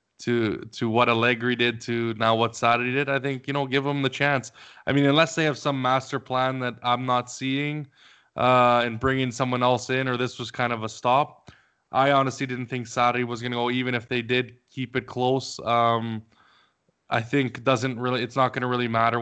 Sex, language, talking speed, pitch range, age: male, English, 210 wpm, 115-130 Hz, 20-39